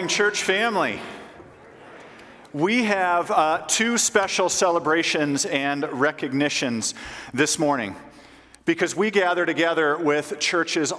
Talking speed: 100 wpm